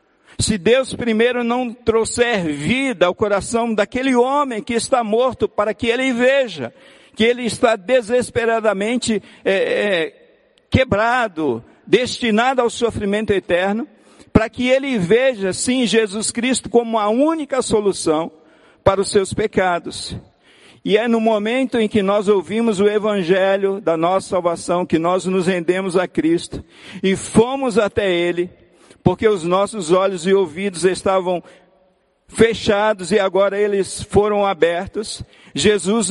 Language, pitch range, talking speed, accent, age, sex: Portuguese, 165-225 Hz, 130 wpm, Brazilian, 60-79, male